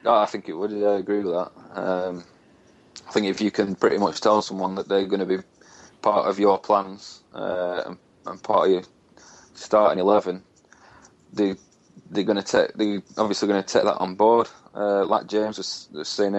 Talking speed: 200 wpm